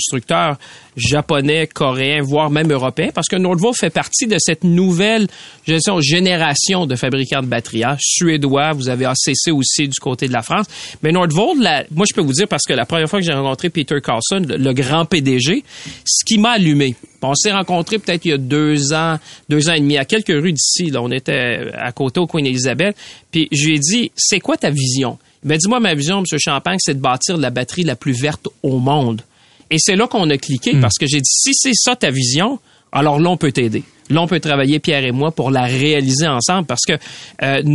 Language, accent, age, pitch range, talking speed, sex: French, Canadian, 40-59, 135-180 Hz, 225 wpm, male